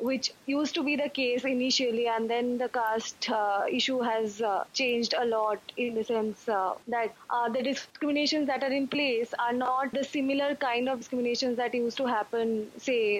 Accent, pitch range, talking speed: Indian, 230-275 Hz, 190 wpm